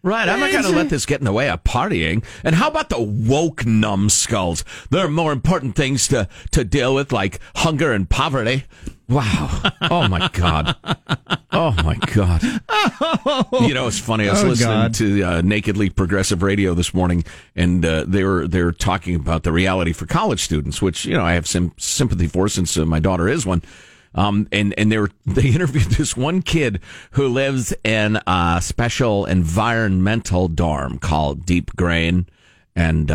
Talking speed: 180 wpm